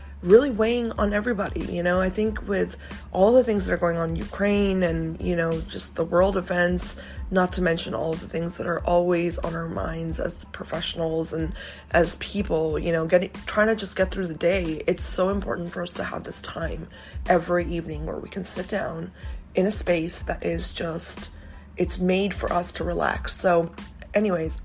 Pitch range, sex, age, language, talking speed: 165-190 Hz, female, 20-39, English, 200 wpm